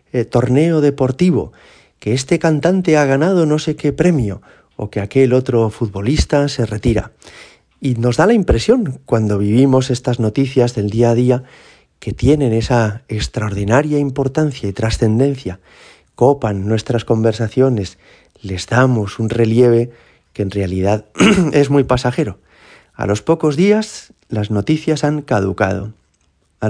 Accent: Spanish